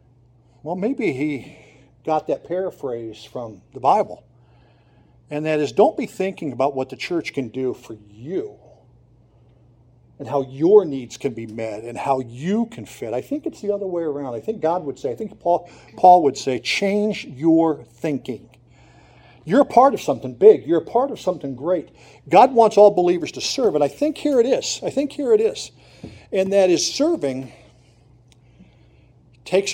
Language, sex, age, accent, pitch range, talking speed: English, male, 50-69, American, 125-190 Hz, 180 wpm